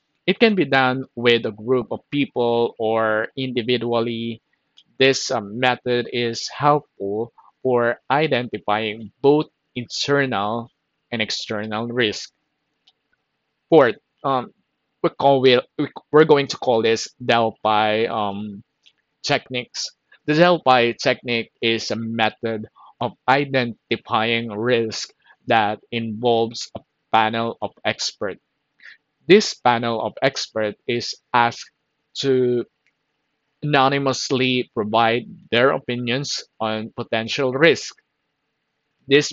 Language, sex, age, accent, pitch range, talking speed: Filipino, male, 20-39, native, 115-135 Hz, 95 wpm